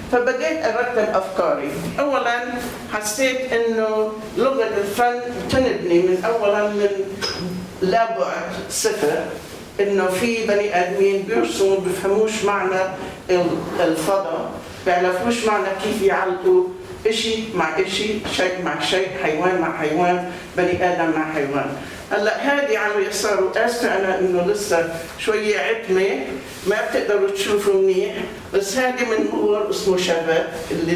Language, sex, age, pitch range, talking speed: English, male, 50-69, 175-215 Hz, 115 wpm